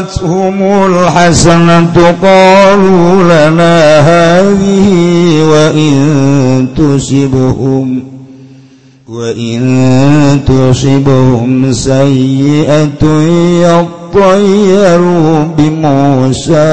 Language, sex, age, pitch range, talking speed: Indonesian, male, 50-69, 130-155 Hz, 40 wpm